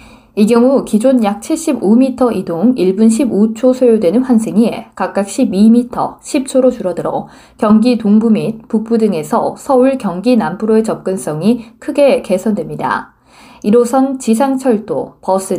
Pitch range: 205-255 Hz